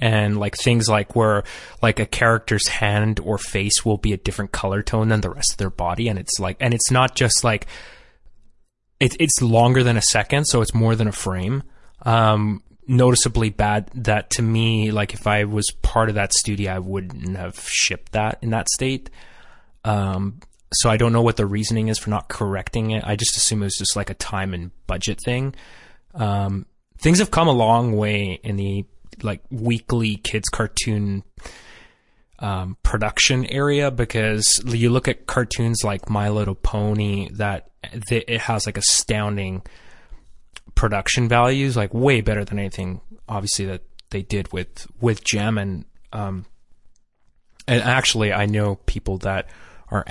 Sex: male